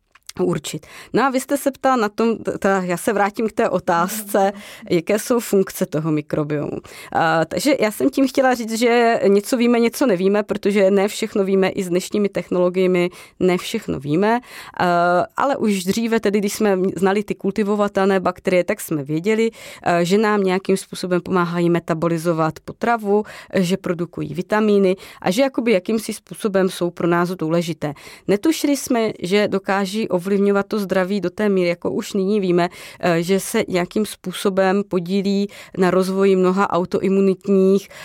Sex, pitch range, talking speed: female, 180-210 Hz, 155 wpm